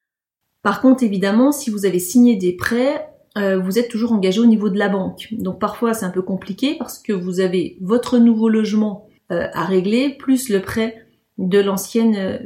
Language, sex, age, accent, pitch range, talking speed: French, female, 30-49, French, 190-240 Hz, 195 wpm